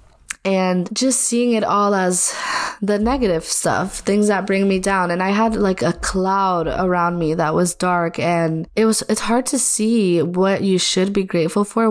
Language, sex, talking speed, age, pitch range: English, female, 190 wpm, 20-39, 180-210 Hz